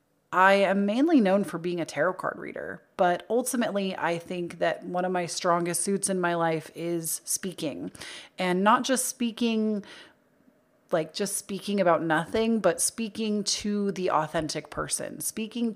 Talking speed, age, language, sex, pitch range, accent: 155 wpm, 30-49, English, female, 165-195 Hz, American